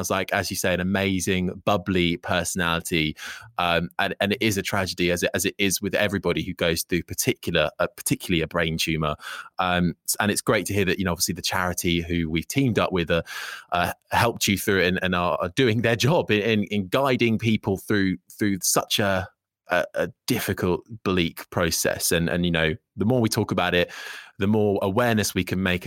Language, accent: English, British